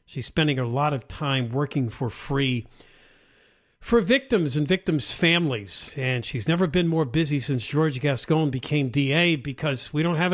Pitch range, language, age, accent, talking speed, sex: 130-190 Hz, English, 50-69, American, 170 wpm, male